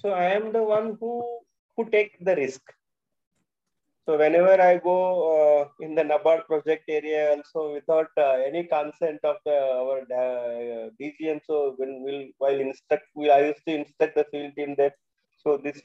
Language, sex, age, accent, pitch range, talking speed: English, male, 30-49, Indian, 150-195 Hz, 180 wpm